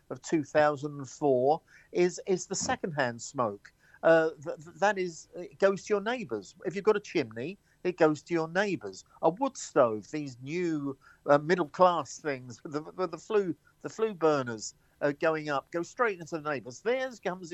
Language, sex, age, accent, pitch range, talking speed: English, male, 50-69, British, 145-190 Hz, 180 wpm